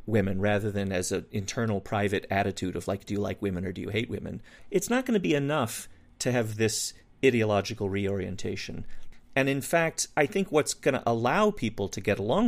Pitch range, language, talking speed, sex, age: 100-135 Hz, English, 205 wpm, male, 40-59